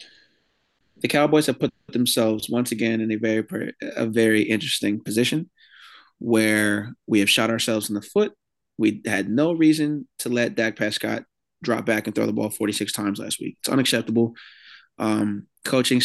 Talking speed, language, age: 165 wpm, English, 20-39